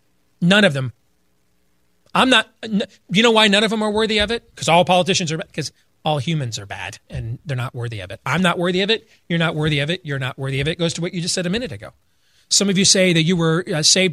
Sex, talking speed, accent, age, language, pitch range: male, 270 wpm, American, 30-49, English, 120-180 Hz